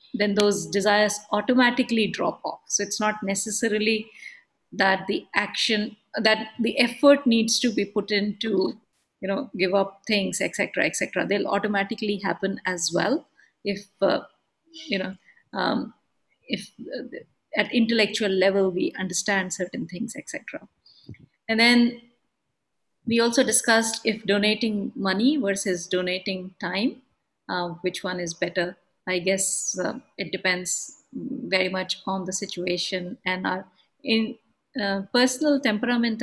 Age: 50-69